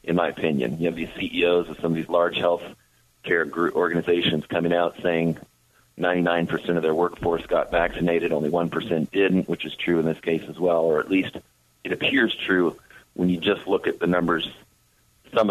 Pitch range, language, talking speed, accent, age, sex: 85-90 Hz, English, 190 wpm, American, 40-59, male